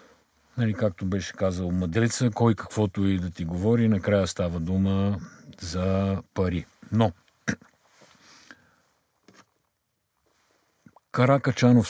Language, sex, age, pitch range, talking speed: Bulgarian, male, 50-69, 85-110 Hz, 90 wpm